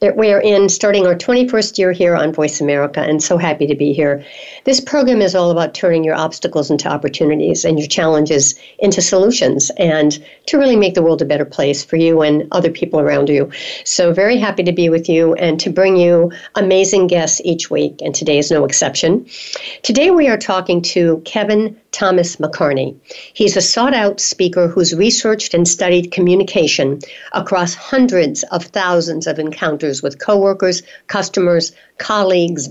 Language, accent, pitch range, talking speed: English, American, 160-205 Hz, 170 wpm